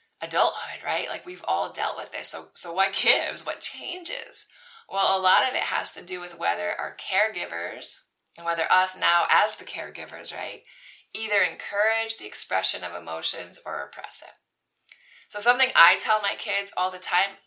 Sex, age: female, 20-39